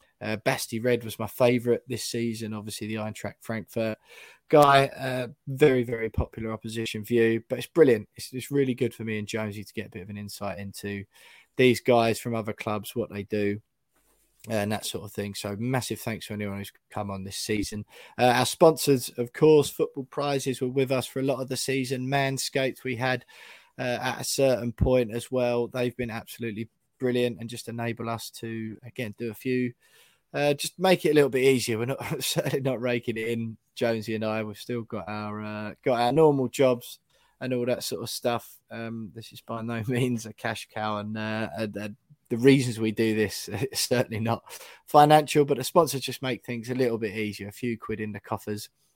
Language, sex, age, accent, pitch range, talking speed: English, male, 20-39, British, 110-130 Hz, 210 wpm